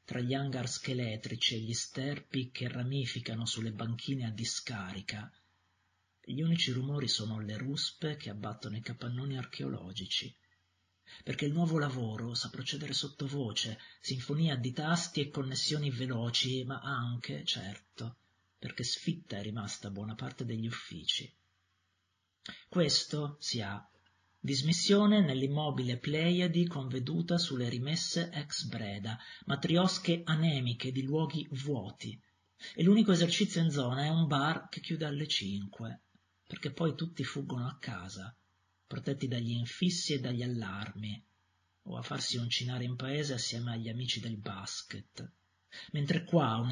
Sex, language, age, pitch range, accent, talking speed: male, Italian, 40-59, 100-145 Hz, native, 130 wpm